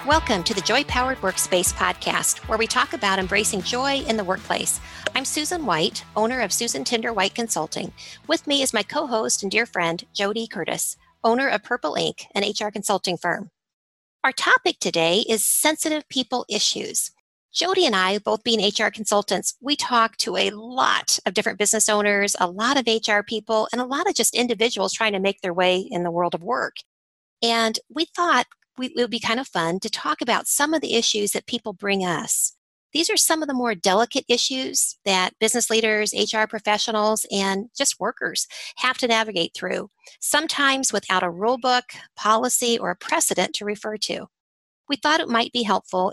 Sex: female